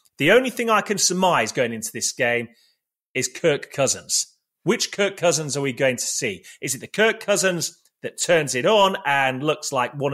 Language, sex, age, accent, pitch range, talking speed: English, male, 30-49, British, 125-175 Hz, 200 wpm